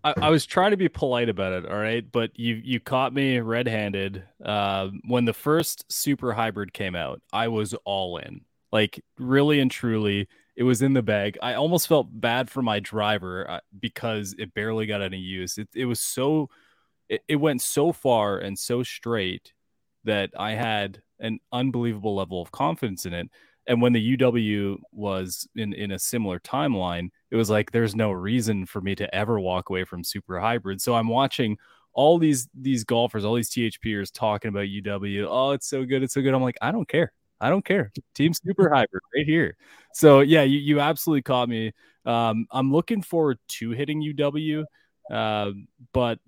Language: English